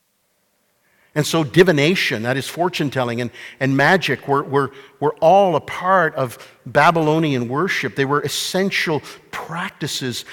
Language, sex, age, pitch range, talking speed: English, male, 50-69, 140-180 Hz, 130 wpm